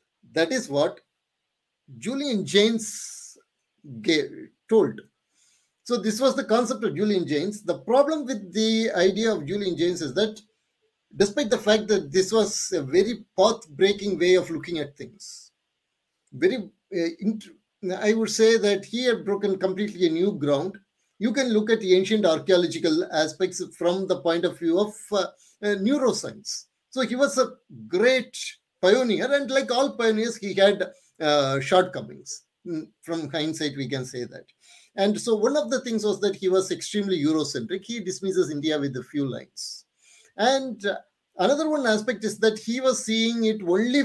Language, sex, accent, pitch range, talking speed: English, male, Indian, 185-240 Hz, 160 wpm